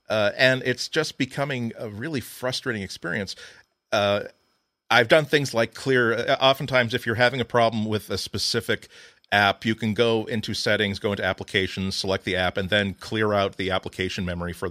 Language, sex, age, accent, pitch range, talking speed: English, male, 40-59, American, 95-120 Hz, 180 wpm